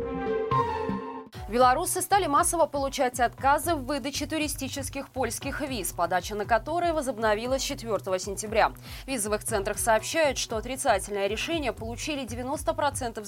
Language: Russian